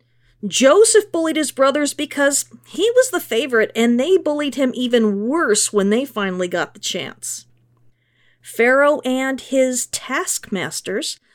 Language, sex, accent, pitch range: English, female, American, 200-280 Hz